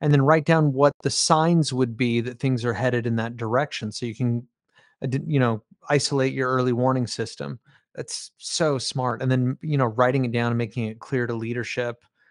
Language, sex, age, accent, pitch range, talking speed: English, male, 30-49, American, 120-140 Hz, 205 wpm